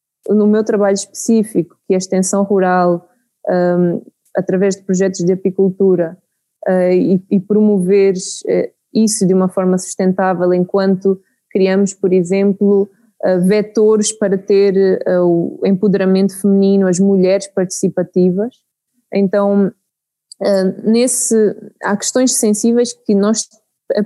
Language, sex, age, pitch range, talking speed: Portuguese, female, 20-39, 190-210 Hz, 120 wpm